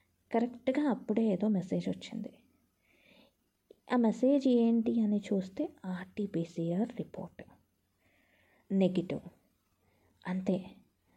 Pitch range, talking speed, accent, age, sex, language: 185-235 Hz, 75 wpm, native, 20-39, female, Telugu